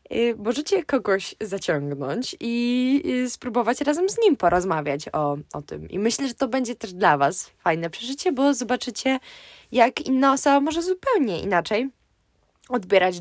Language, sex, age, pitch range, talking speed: Polish, female, 20-39, 175-255 Hz, 140 wpm